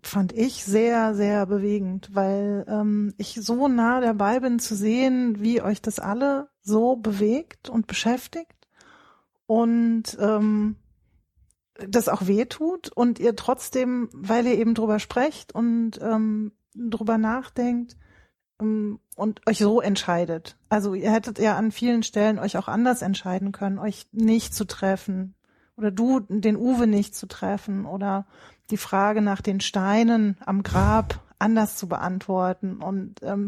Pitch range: 205-235 Hz